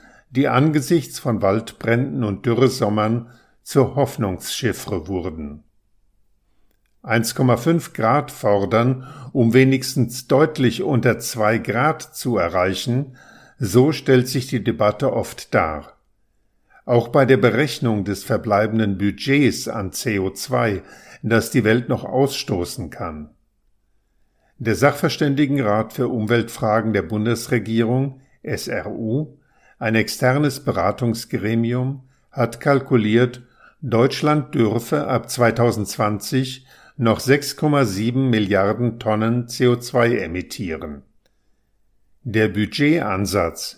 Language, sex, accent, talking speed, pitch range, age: German, male, German, 90 wpm, 105-130 Hz, 50-69